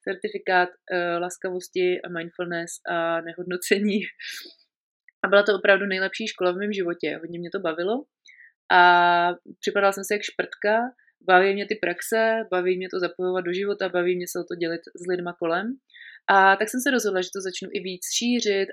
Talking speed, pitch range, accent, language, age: 180 wpm, 175-205 Hz, native, Czech, 30-49